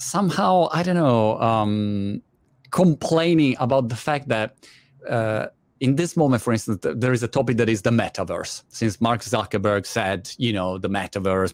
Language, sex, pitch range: Italian, male, 110-145 Hz